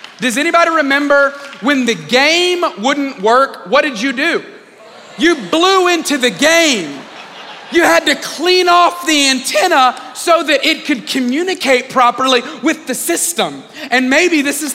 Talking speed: 150 wpm